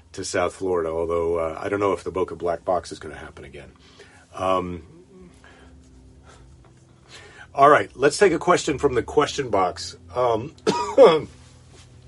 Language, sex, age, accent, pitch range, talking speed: English, male, 50-69, American, 85-120 Hz, 150 wpm